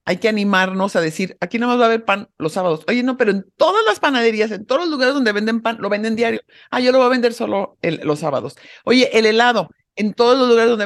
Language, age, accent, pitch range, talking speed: English, 50-69, Mexican, 180-230 Hz, 270 wpm